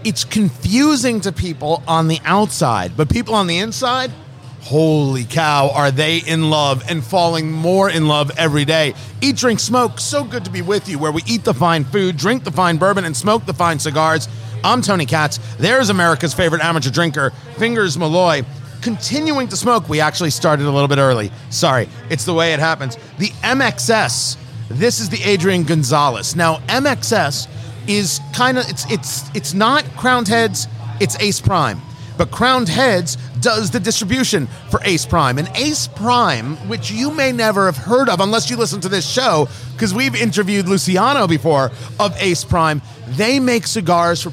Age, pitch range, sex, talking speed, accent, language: 40-59, 135-190 Hz, male, 180 wpm, American, English